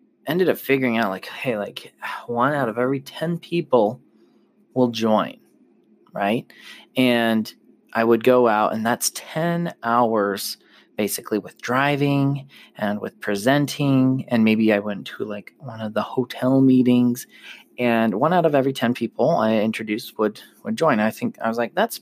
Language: English